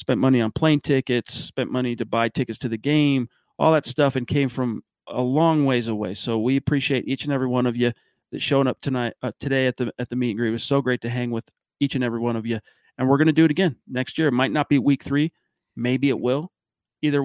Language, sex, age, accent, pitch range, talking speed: English, male, 40-59, American, 125-150 Hz, 270 wpm